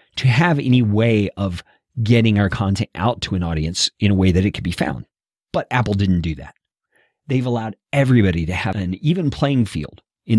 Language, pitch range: English, 95-130 Hz